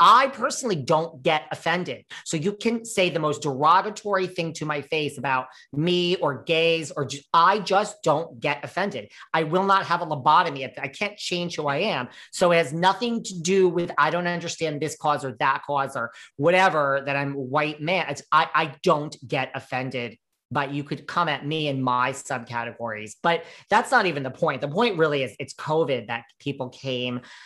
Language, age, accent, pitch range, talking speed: English, 40-59, American, 135-175 Hz, 200 wpm